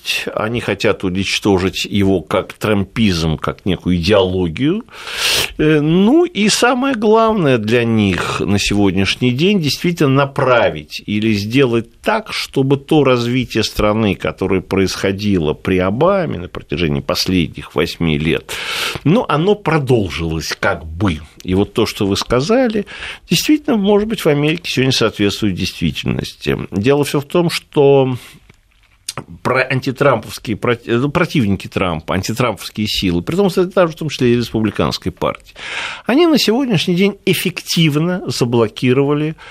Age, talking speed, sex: 50-69, 120 wpm, male